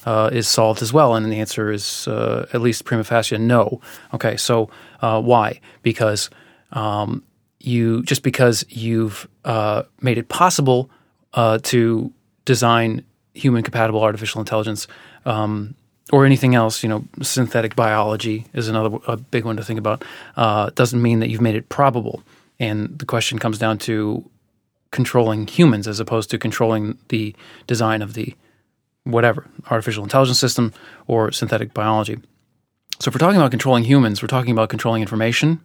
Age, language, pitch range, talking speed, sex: 30-49, English, 110-130 Hz, 160 wpm, male